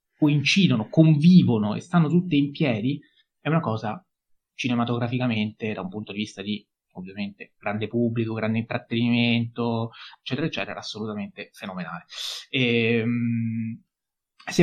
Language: Italian